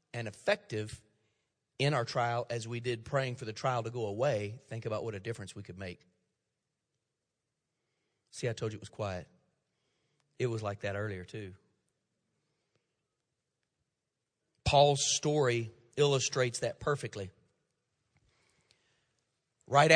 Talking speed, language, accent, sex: 125 wpm, English, American, male